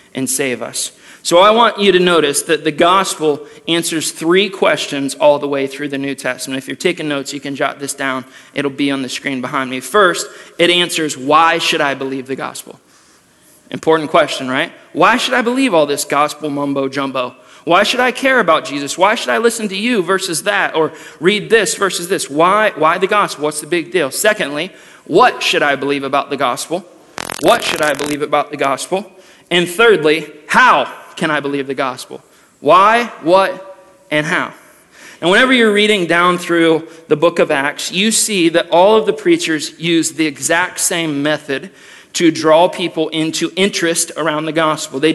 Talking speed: 190 wpm